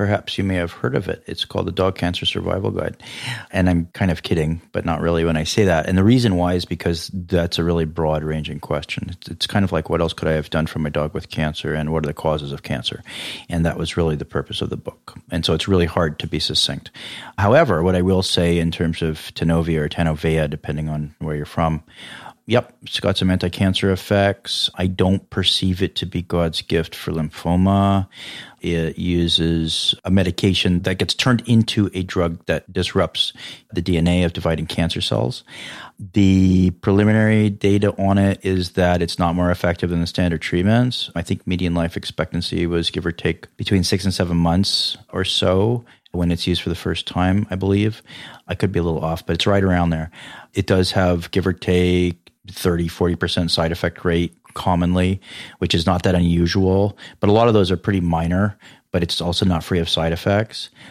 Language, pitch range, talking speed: English, 85-100 Hz, 210 wpm